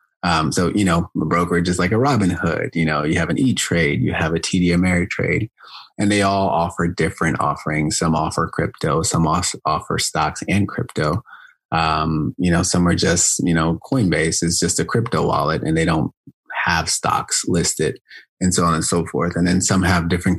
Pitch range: 80-95 Hz